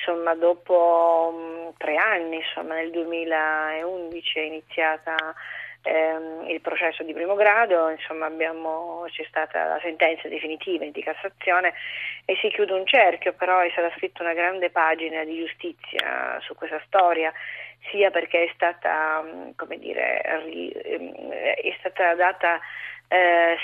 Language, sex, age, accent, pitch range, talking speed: Italian, female, 30-49, native, 160-180 Hz, 130 wpm